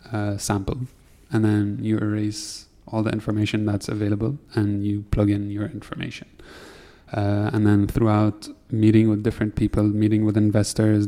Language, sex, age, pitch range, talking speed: English, male, 20-39, 105-110 Hz, 150 wpm